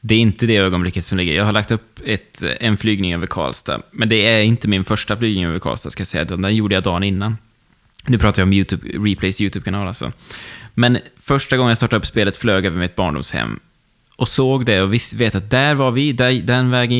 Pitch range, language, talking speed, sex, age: 95-125 Hz, Swedish, 230 wpm, male, 20-39